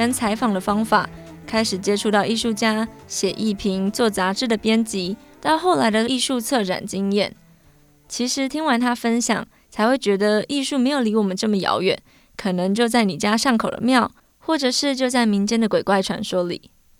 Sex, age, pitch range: female, 20-39, 200-245 Hz